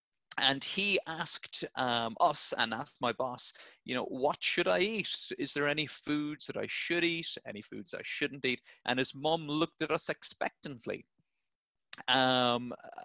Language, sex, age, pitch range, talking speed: English, male, 30-49, 140-190 Hz, 165 wpm